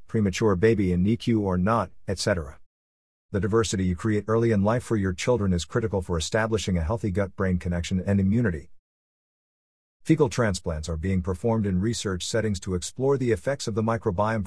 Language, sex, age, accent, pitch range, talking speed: English, male, 50-69, American, 90-115 Hz, 175 wpm